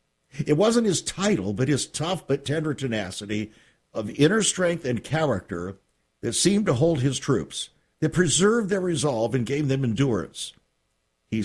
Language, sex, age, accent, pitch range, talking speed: English, male, 60-79, American, 105-160 Hz, 155 wpm